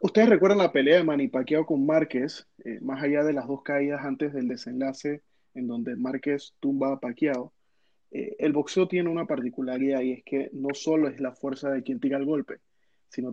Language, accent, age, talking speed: Spanish, Venezuelan, 30-49, 205 wpm